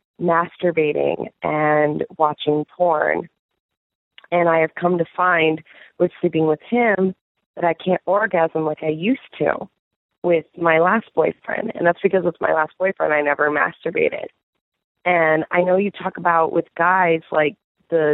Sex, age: female, 30-49